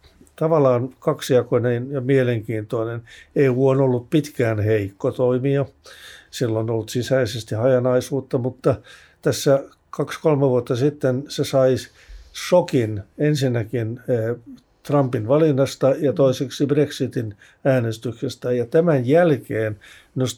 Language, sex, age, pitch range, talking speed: Finnish, male, 50-69, 120-140 Hz, 100 wpm